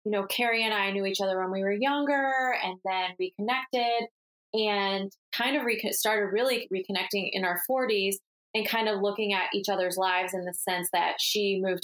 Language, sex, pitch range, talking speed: English, female, 185-225 Hz, 200 wpm